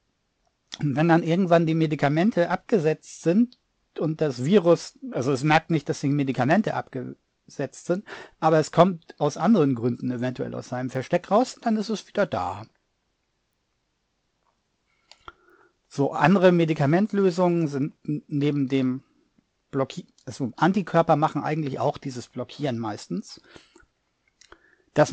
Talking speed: 120 wpm